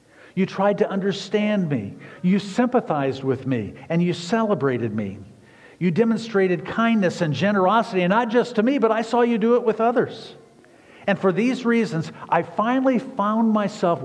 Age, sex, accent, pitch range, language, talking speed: 50-69, male, American, 160-220 Hz, English, 165 wpm